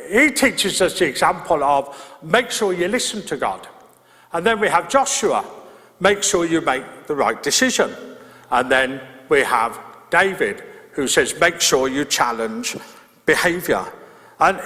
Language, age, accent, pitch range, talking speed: English, 50-69, British, 190-275 Hz, 150 wpm